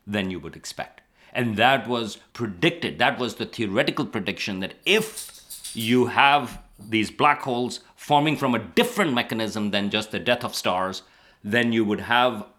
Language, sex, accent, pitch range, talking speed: English, male, Indian, 105-130 Hz, 165 wpm